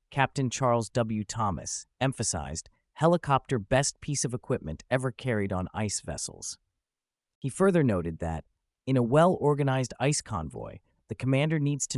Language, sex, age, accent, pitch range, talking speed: English, male, 30-49, American, 95-130 Hz, 140 wpm